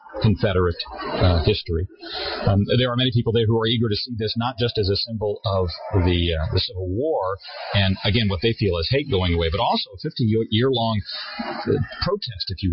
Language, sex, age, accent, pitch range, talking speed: English, male, 40-59, American, 95-120 Hz, 205 wpm